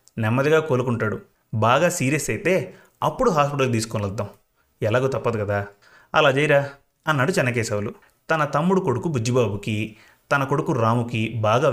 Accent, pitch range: native, 120-155 Hz